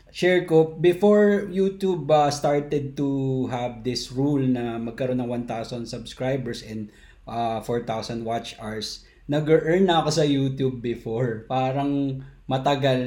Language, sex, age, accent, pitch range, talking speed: Filipino, male, 20-39, native, 125-160 Hz, 130 wpm